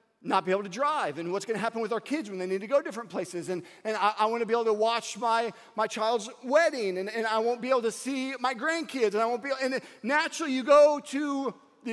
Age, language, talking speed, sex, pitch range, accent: 40-59, English, 275 wpm, male, 220-280 Hz, American